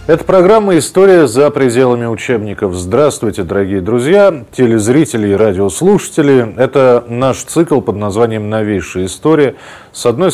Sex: male